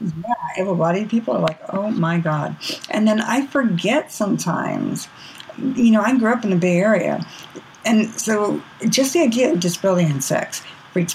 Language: English